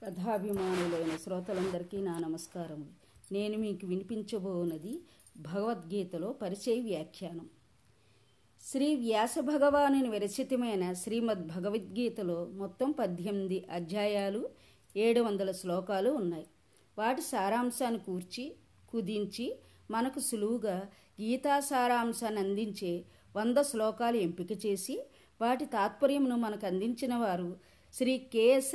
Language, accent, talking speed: Telugu, native, 85 wpm